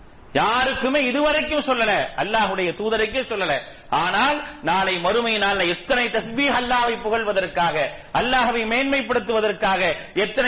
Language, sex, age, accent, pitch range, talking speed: English, male, 40-59, Indian, 160-220 Hz, 110 wpm